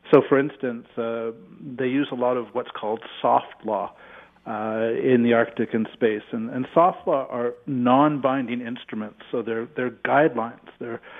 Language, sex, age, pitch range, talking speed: English, male, 50-69, 120-145 Hz, 165 wpm